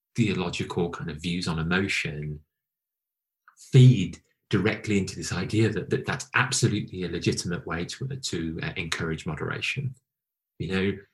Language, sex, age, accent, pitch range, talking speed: English, male, 30-49, British, 80-115 Hz, 135 wpm